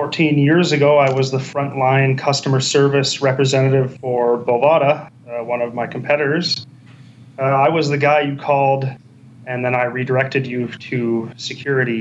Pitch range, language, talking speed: 120-145 Hz, English, 155 wpm